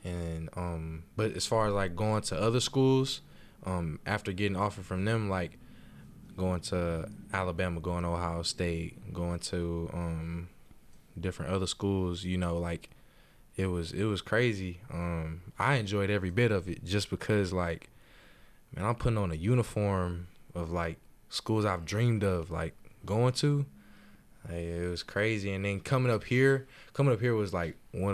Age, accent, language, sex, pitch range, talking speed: 20-39, American, English, male, 90-115 Hz, 165 wpm